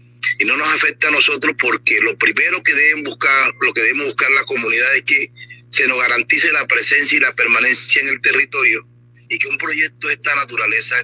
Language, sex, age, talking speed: Spanish, male, 30-49, 205 wpm